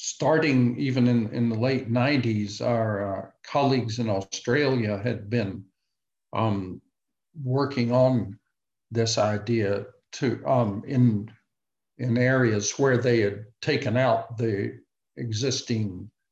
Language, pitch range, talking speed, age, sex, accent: English, 105-125 Hz, 115 wpm, 60-79, male, American